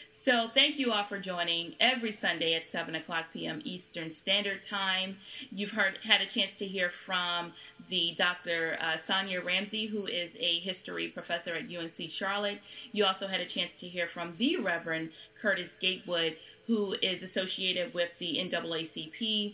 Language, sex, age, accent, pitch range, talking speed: English, female, 30-49, American, 170-210 Hz, 165 wpm